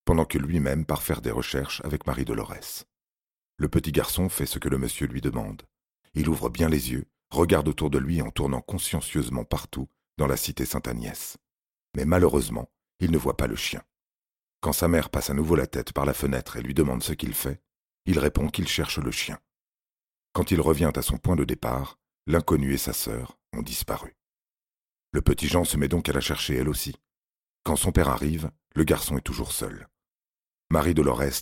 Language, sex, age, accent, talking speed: French, male, 40-59, French, 200 wpm